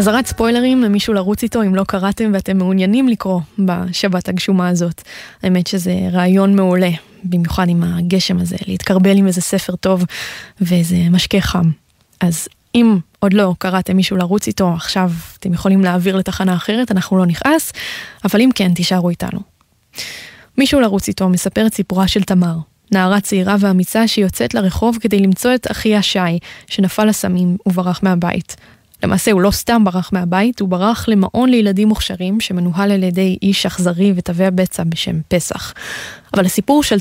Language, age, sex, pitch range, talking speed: Hebrew, 20-39, female, 185-225 Hz, 155 wpm